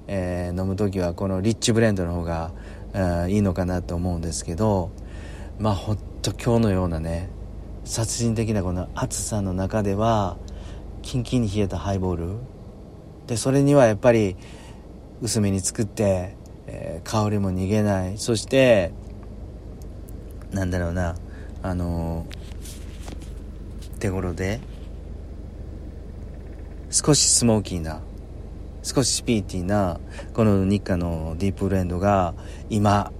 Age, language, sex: 40-59, Japanese, male